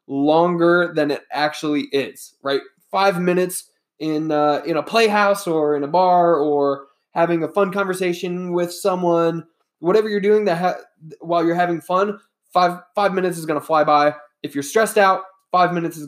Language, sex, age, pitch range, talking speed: English, male, 20-39, 150-190 Hz, 175 wpm